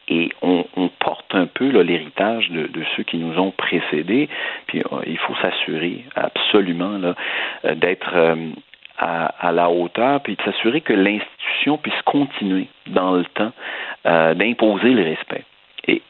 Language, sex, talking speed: French, male, 155 wpm